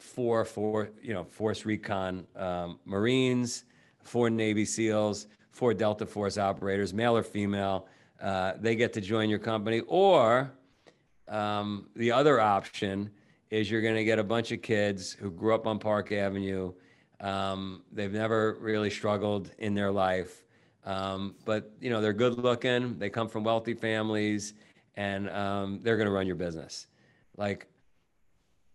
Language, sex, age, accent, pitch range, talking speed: English, male, 50-69, American, 95-110 Hz, 155 wpm